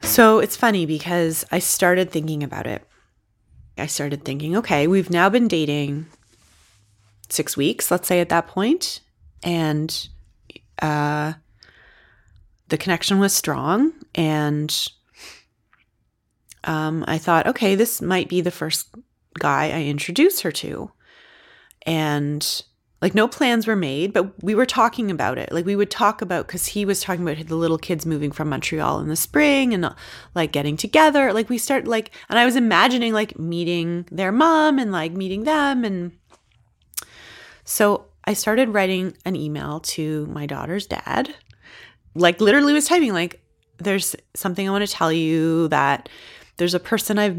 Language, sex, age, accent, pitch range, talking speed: English, female, 30-49, American, 155-210 Hz, 155 wpm